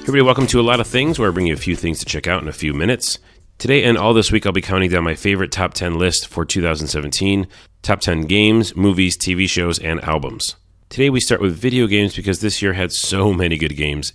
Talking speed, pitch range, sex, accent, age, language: 255 wpm, 80-95 Hz, male, American, 30-49, English